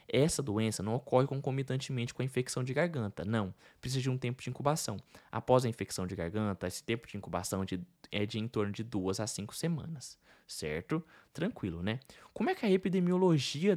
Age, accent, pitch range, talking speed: 20-39, Brazilian, 110-140 Hz, 200 wpm